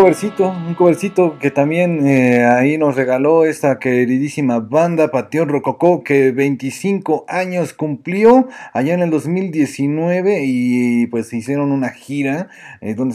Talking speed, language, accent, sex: 130 wpm, Spanish, Mexican, male